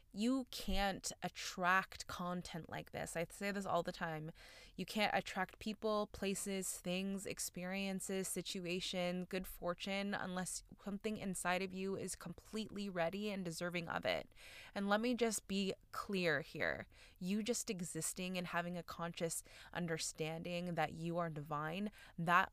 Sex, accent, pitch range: female, American, 165-195 Hz